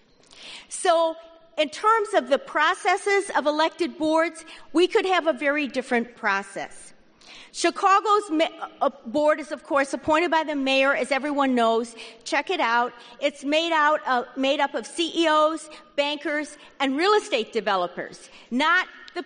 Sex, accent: female, American